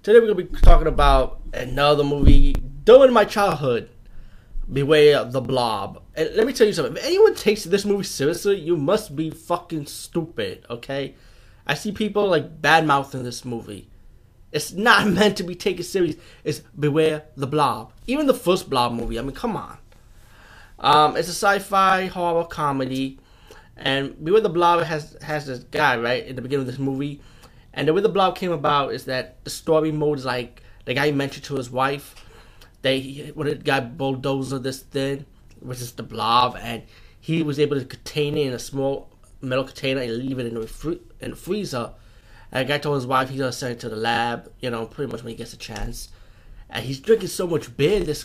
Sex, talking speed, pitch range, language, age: male, 205 wpm, 120-160 Hz, English, 20-39